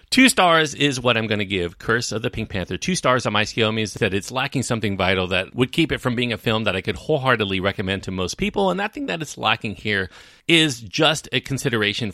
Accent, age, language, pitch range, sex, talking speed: American, 40-59, English, 90-125 Hz, male, 250 wpm